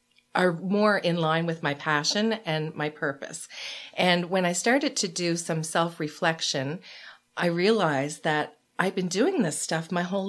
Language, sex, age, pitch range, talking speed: English, female, 40-59, 165-205 Hz, 165 wpm